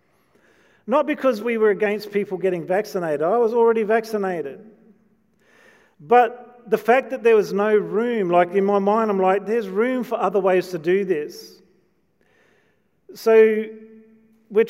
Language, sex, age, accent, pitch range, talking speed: English, male, 40-59, Australian, 175-220 Hz, 145 wpm